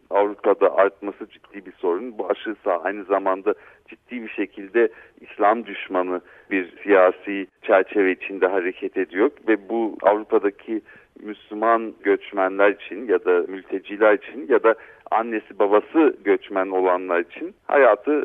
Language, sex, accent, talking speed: Turkish, male, native, 125 wpm